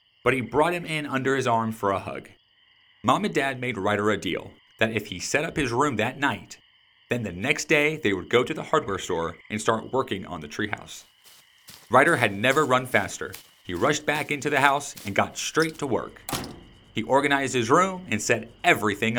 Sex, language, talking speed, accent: male, English, 210 wpm, American